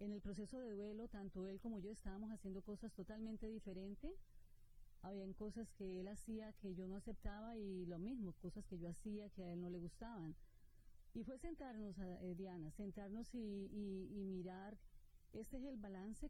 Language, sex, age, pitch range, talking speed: Spanish, female, 40-59, 190-225 Hz, 185 wpm